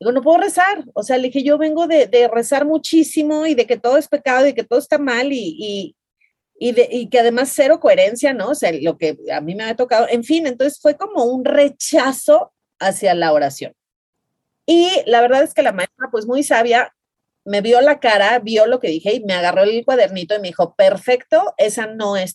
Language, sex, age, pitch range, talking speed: Spanish, female, 30-49, 205-290 Hz, 225 wpm